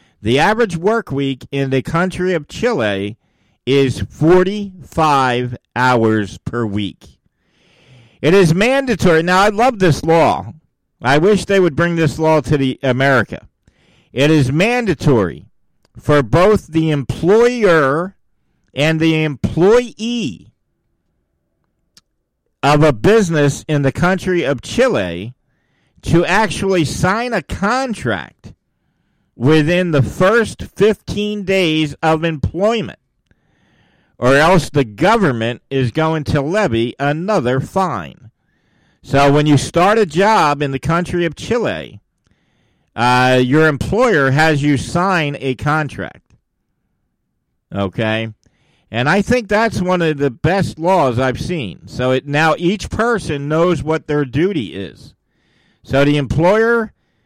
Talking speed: 120 wpm